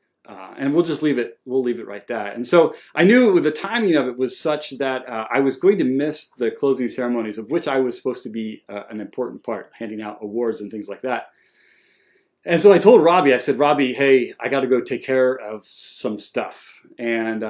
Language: English